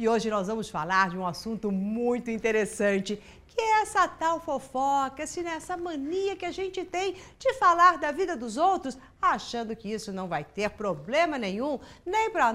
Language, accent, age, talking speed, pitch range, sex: Portuguese, Brazilian, 50-69, 175 wpm, 200-330 Hz, female